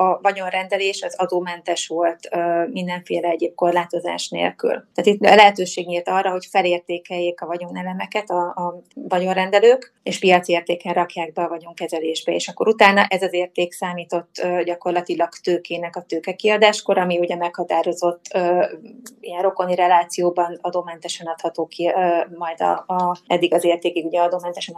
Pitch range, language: 175-185 Hz, Hungarian